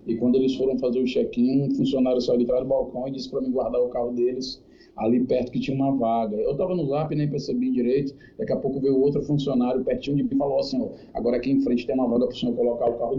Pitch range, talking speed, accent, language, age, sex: 130-145 Hz, 280 wpm, Brazilian, Portuguese, 20-39, male